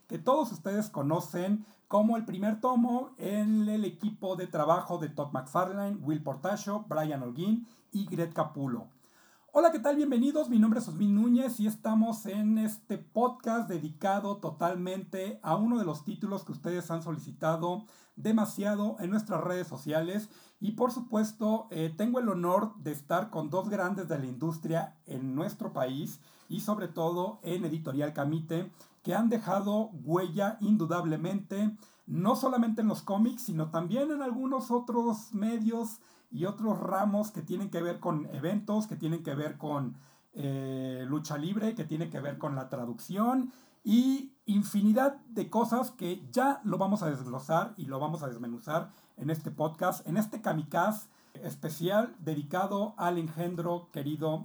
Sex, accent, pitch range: male, Mexican, 160-215 Hz